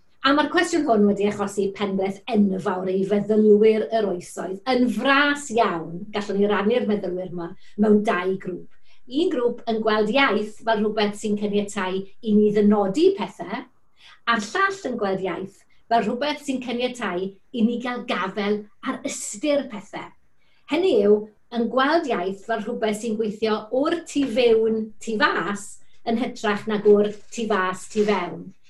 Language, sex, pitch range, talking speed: English, female, 205-265 Hz, 145 wpm